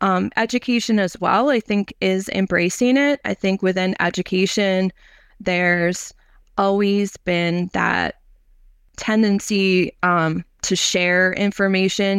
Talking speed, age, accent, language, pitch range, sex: 110 wpm, 20-39, American, English, 175-200 Hz, female